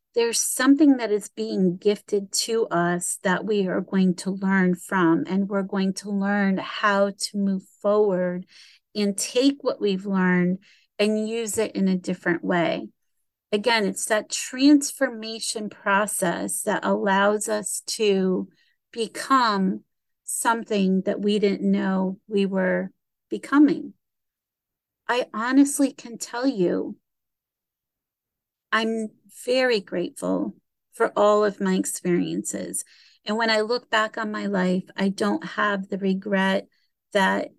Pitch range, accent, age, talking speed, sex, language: 190-220 Hz, American, 40-59, 130 wpm, female, English